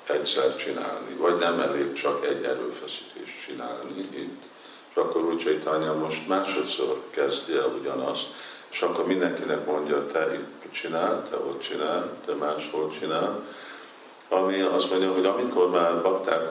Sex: male